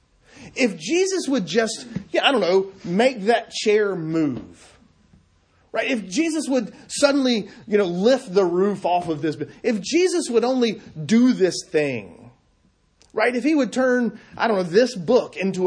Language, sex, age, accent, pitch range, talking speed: English, male, 30-49, American, 175-255 Hz, 165 wpm